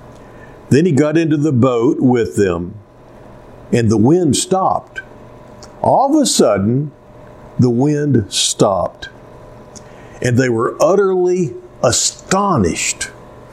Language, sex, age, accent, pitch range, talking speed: English, male, 60-79, American, 135-190 Hz, 105 wpm